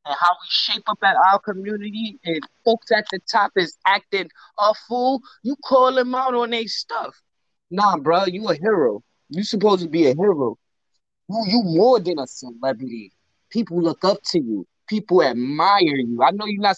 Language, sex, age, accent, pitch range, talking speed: English, male, 20-39, American, 180-225 Hz, 190 wpm